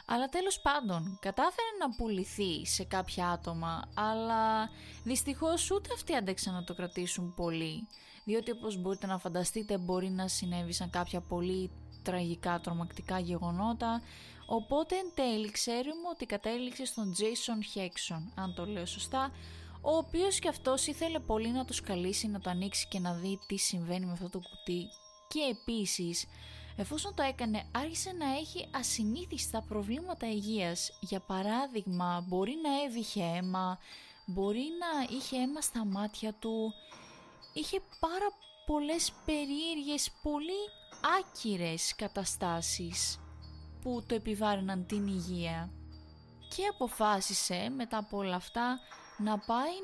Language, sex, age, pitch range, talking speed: Greek, female, 20-39, 185-260 Hz, 130 wpm